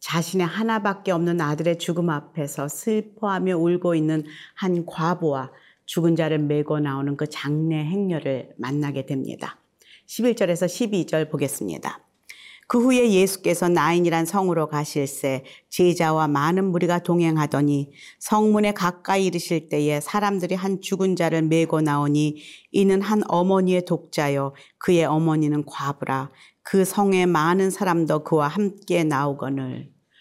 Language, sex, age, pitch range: Korean, female, 40-59, 155-195 Hz